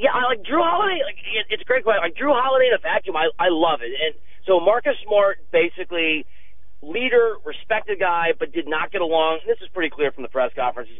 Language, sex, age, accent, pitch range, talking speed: English, male, 30-49, American, 145-185 Hz, 225 wpm